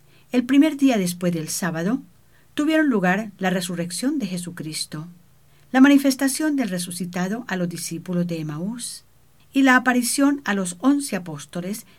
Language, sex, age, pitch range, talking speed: English, female, 50-69, 165-250 Hz, 140 wpm